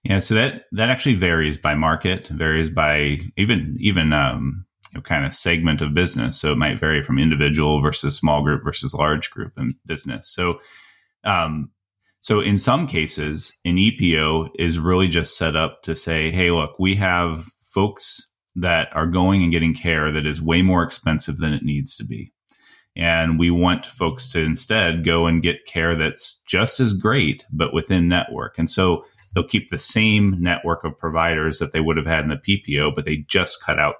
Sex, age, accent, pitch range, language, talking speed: male, 30-49, American, 80-95 Hz, English, 190 wpm